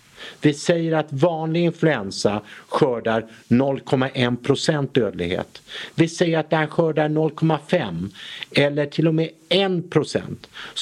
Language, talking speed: English, 105 wpm